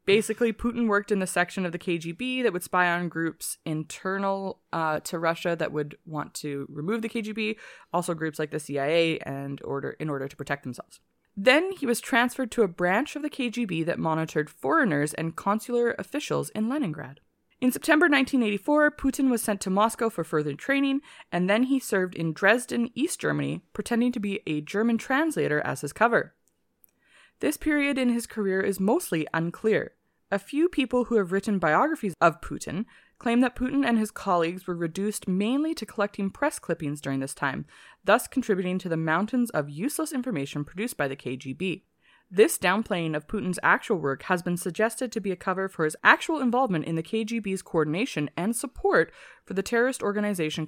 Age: 20-39